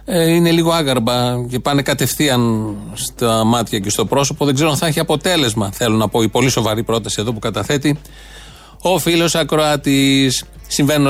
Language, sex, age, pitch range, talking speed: Greek, male, 30-49, 120-150 Hz, 170 wpm